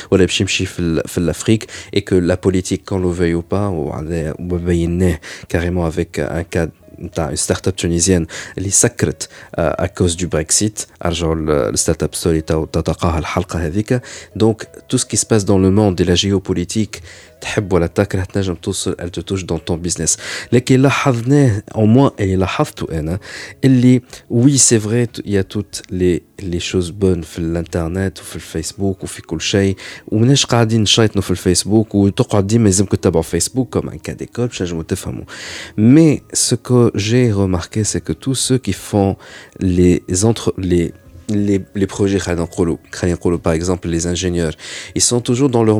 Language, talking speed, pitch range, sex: Arabic, 150 wpm, 85-105 Hz, male